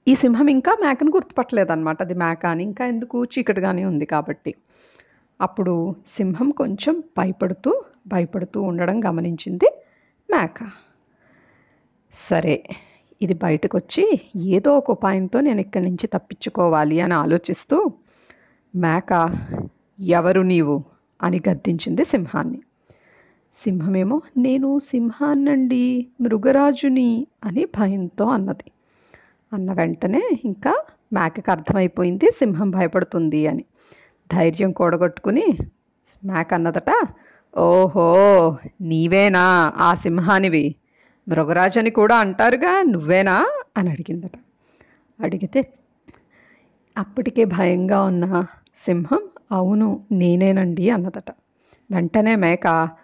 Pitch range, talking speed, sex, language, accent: 175-235 Hz, 90 wpm, female, Telugu, native